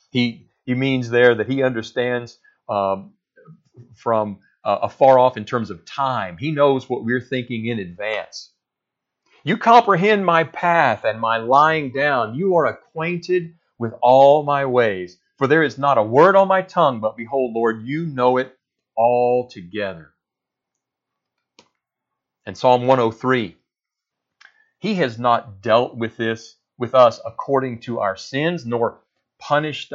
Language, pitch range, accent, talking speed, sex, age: English, 120-145 Hz, American, 140 wpm, male, 40-59